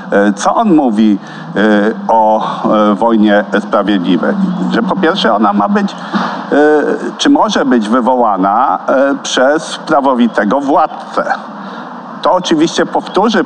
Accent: native